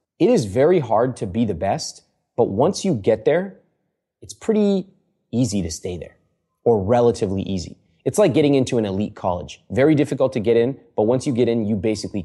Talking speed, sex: 200 wpm, male